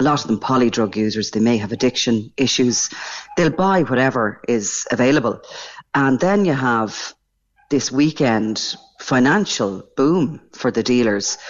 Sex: female